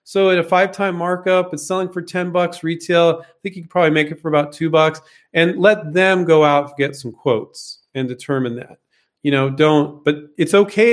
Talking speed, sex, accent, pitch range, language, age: 220 wpm, male, American, 125-165 Hz, English, 40-59